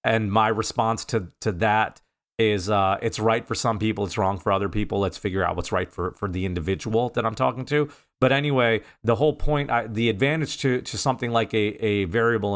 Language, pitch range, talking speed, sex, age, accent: English, 105-125 Hz, 220 wpm, male, 40-59, American